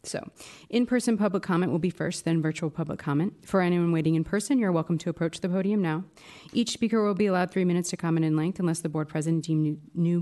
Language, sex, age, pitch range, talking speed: English, female, 30-49, 155-185 Hz, 235 wpm